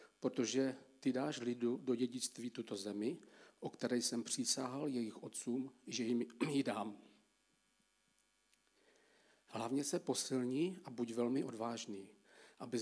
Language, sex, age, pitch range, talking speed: Czech, male, 50-69, 120-135 Hz, 120 wpm